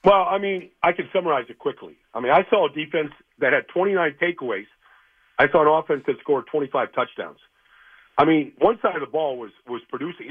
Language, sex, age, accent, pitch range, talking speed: English, male, 50-69, American, 145-200 Hz, 210 wpm